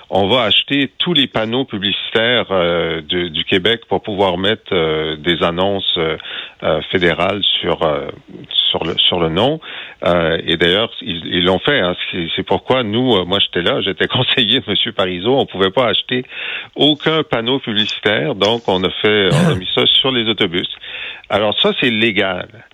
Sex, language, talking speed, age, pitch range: male, French, 180 wpm, 50-69, 95-130 Hz